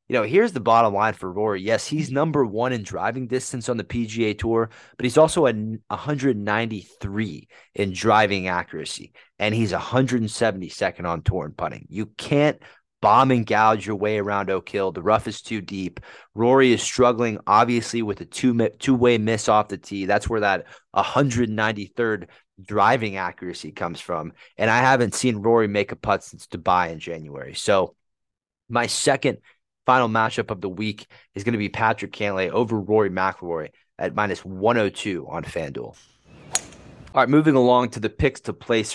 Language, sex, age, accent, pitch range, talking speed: English, male, 30-49, American, 100-120 Hz, 170 wpm